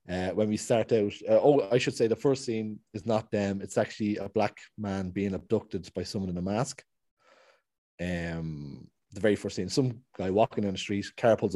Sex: male